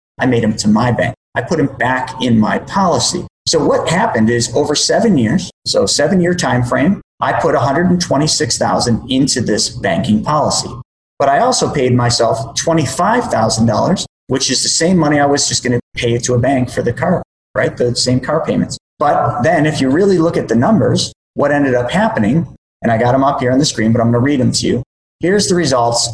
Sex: male